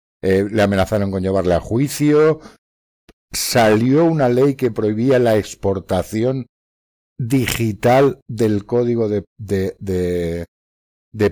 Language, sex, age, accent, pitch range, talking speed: Spanish, male, 60-79, Spanish, 90-125 Hz, 110 wpm